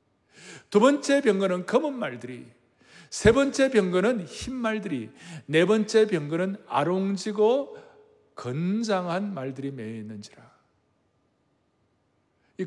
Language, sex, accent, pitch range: Korean, male, native, 145-220 Hz